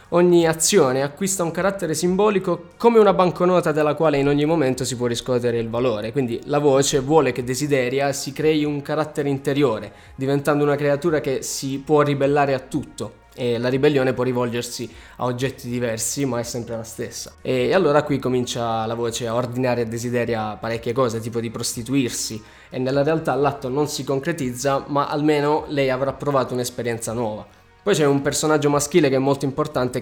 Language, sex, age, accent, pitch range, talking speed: Italian, male, 20-39, native, 120-150 Hz, 180 wpm